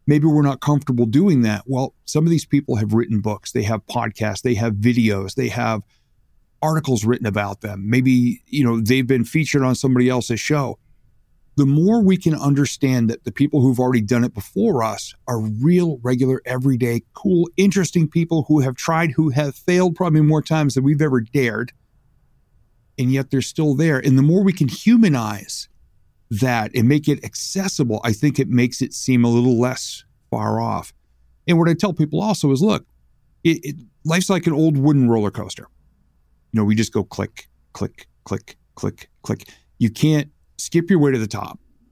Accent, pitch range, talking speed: American, 115-150 Hz, 185 wpm